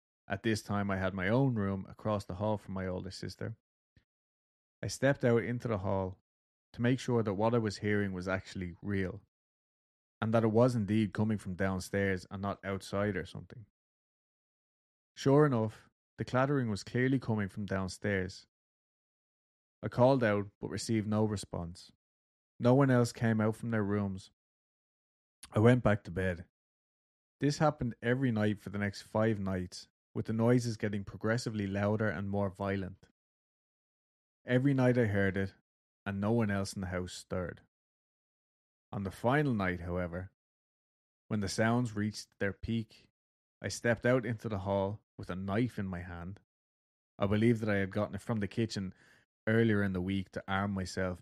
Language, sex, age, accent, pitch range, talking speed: English, male, 20-39, Irish, 95-110 Hz, 170 wpm